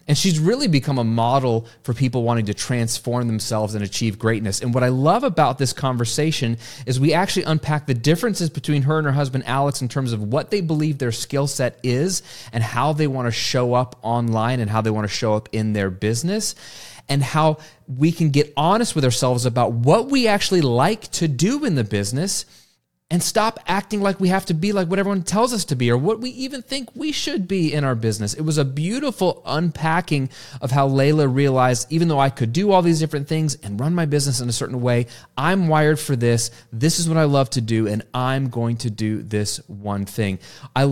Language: English